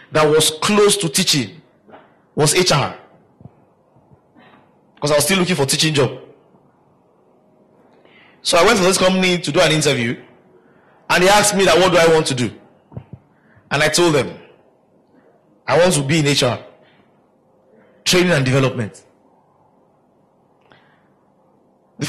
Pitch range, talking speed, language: 150-190 Hz, 140 wpm, English